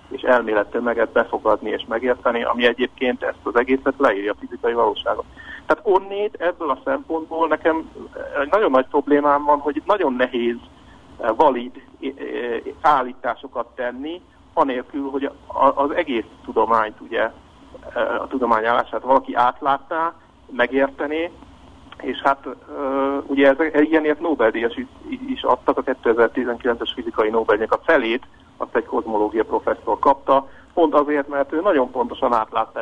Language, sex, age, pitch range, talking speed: Hungarian, male, 60-79, 125-165 Hz, 125 wpm